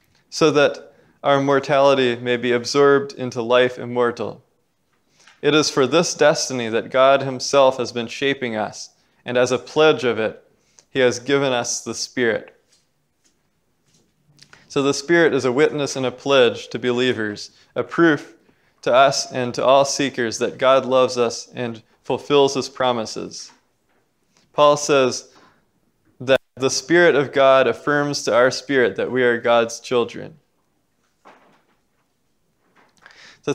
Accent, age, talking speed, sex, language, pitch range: American, 20-39, 140 wpm, male, English, 120-140 Hz